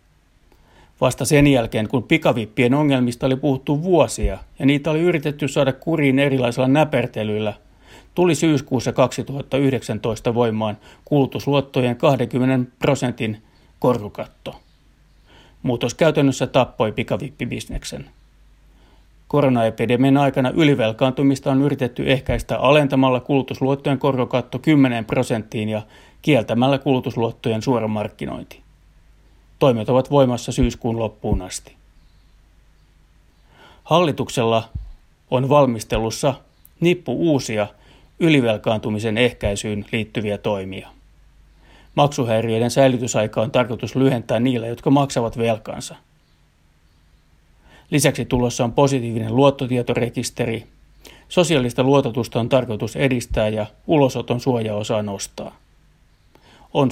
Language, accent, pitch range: Finnish, native, 110-135 Hz